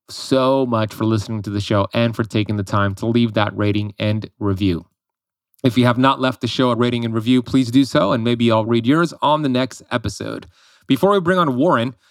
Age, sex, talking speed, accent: 30-49, male, 230 wpm, American